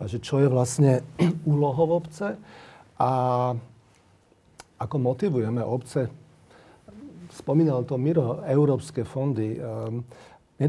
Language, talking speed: Slovak, 95 wpm